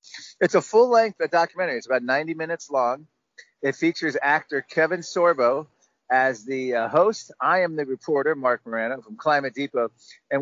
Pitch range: 120-155 Hz